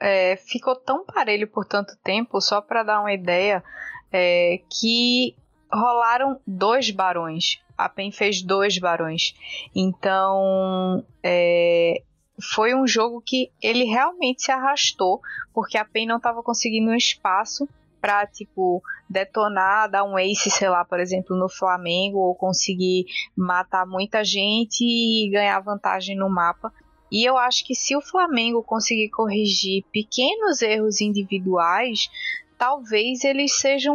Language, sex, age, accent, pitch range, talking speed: Portuguese, female, 20-39, Brazilian, 200-255 Hz, 135 wpm